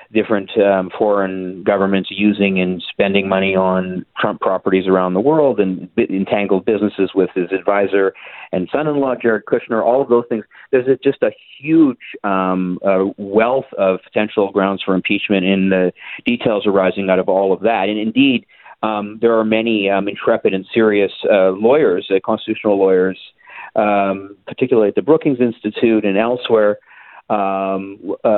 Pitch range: 95-110 Hz